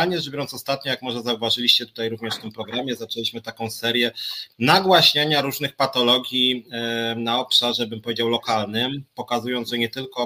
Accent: native